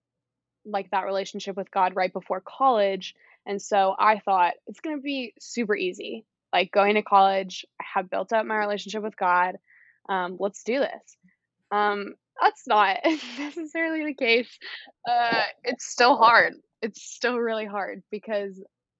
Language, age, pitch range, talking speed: English, 20-39, 190-235 Hz, 155 wpm